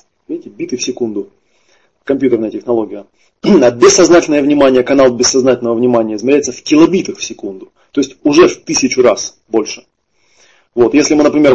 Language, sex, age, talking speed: Russian, male, 20-39, 145 wpm